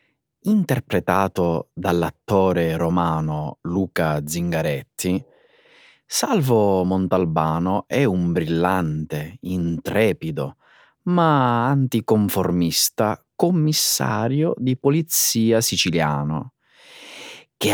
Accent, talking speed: native, 60 wpm